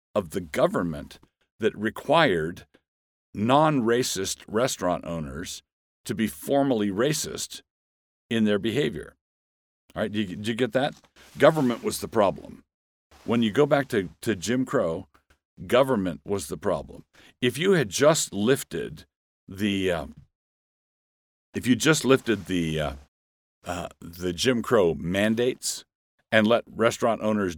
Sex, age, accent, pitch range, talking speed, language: male, 50-69, American, 75-110 Hz, 135 wpm, English